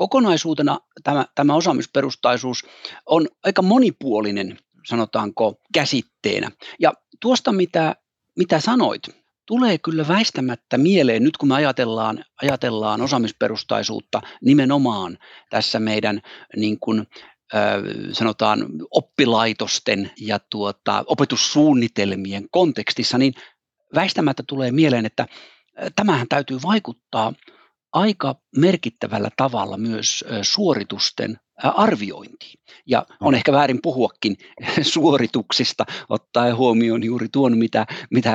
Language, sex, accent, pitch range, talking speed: Finnish, male, native, 115-185 Hz, 90 wpm